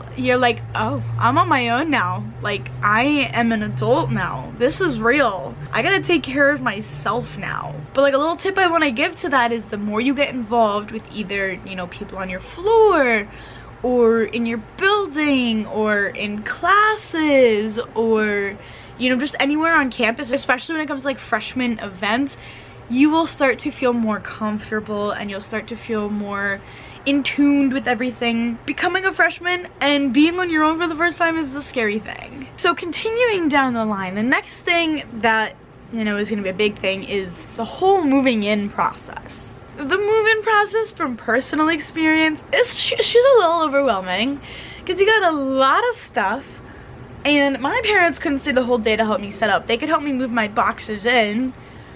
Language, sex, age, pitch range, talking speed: English, female, 10-29, 215-315 Hz, 190 wpm